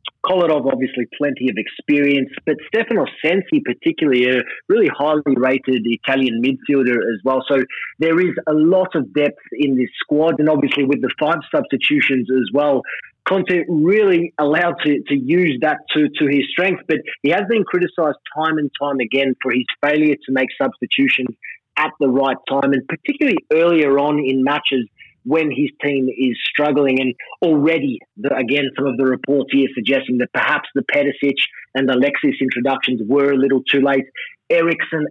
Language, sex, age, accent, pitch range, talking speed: English, male, 30-49, Australian, 135-160 Hz, 170 wpm